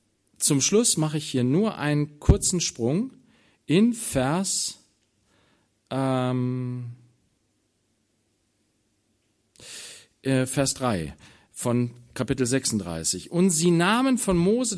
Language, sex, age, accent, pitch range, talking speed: German, male, 40-59, German, 115-170 Hz, 90 wpm